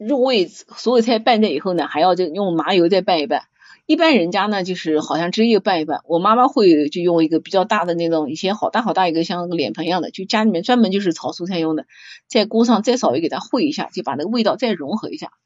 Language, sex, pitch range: Chinese, female, 175-240 Hz